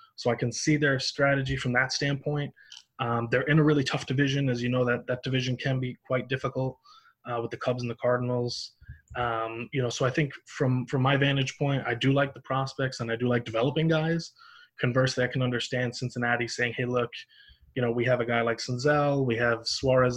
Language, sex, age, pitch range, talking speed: English, male, 20-39, 120-135 Hz, 220 wpm